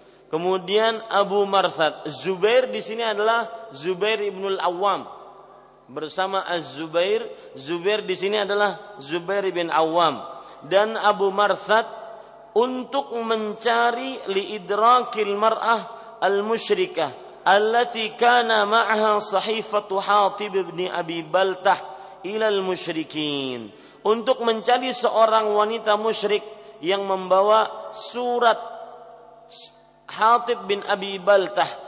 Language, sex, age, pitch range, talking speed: Malay, male, 40-59, 190-230 Hz, 85 wpm